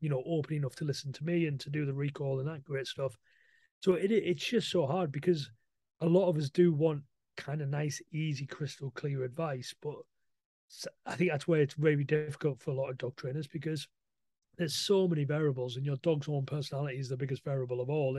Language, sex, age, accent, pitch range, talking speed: English, male, 30-49, British, 135-165 Hz, 220 wpm